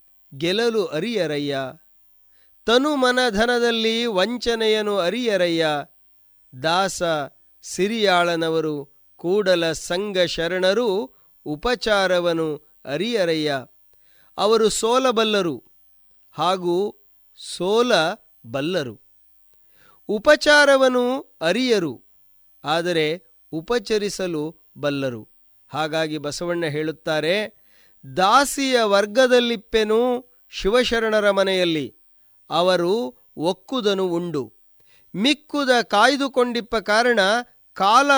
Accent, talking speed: native, 55 wpm